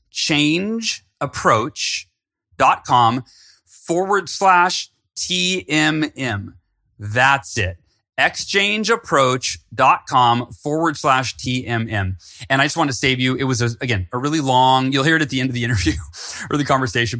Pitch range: 105-135 Hz